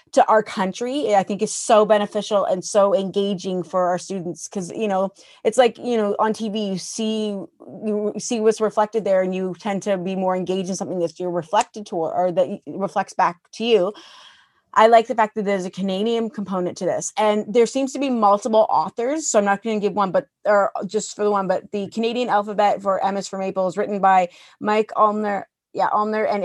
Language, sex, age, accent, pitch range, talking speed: English, female, 30-49, American, 190-220 Hz, 220 wpm